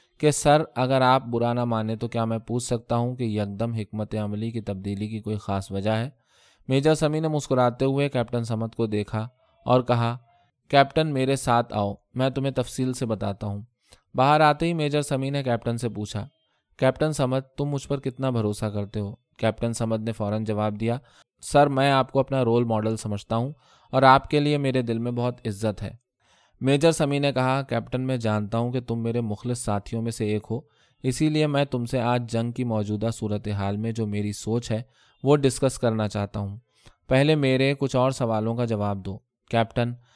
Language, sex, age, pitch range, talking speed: Urdu, male, 20-39, 110-130 Hz, 200 wpm